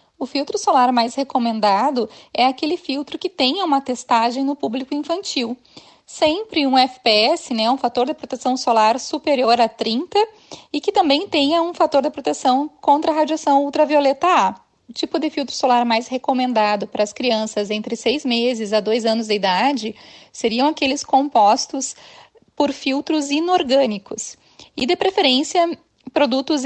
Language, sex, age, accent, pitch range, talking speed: Portuguese, female, 10-29, Brazilian, 235-295 Hz, 155 wpm